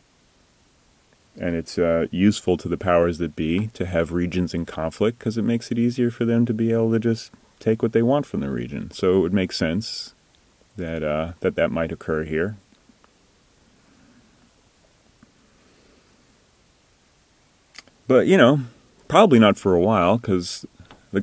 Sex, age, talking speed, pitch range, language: male, 30-49, 155 wpm, 85-110 Hz, English